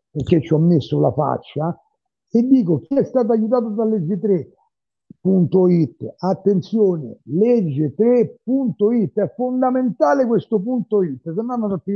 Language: Italian